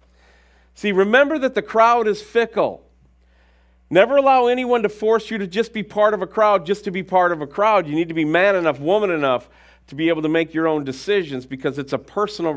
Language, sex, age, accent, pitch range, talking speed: English, male, 40-59, American, 125-200 Hz, 225 wpm